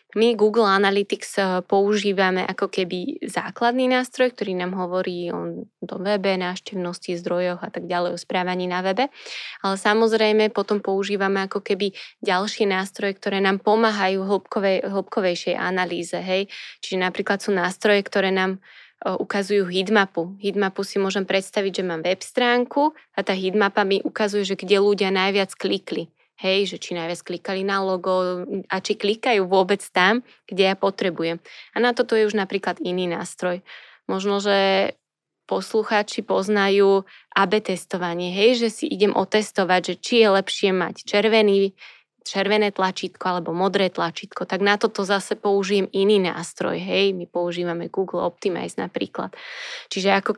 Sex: female